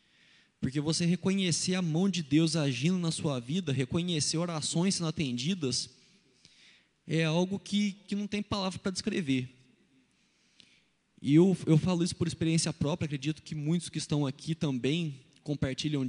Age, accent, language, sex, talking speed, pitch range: 20-39, Brazilian, Portuguese, male, 150 wpm, 145-185 Hz